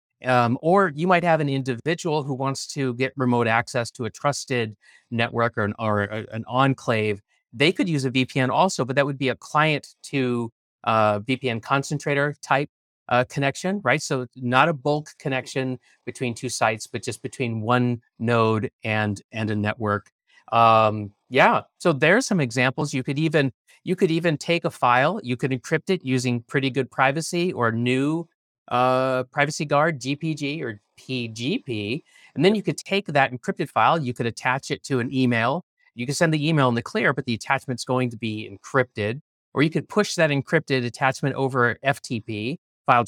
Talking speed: 180 wpm